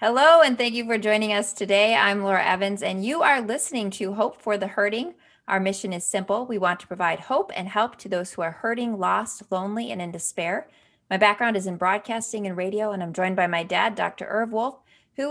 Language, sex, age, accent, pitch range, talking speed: English, female, 30-49, American, 185-230 Hz, 225 wpm